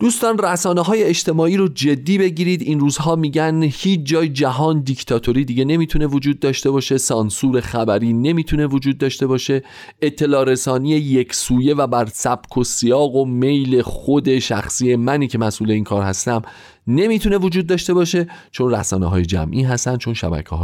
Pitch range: 110-155 Hz